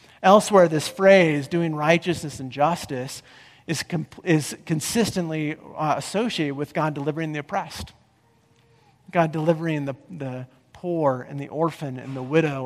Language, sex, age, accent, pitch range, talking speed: English, male, 40-59, American, 130-160 Hz, 135 wpm